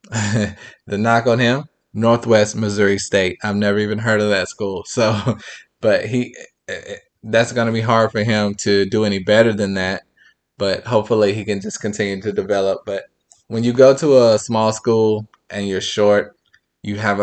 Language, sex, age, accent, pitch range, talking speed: English, male, 20-39, American, 100-115 Hz, 180 wpm